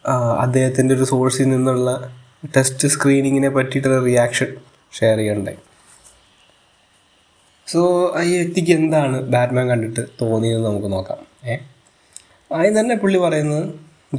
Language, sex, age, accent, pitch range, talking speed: Malayalam, male, 20-39, native, 115-150 Hz, 95 wpm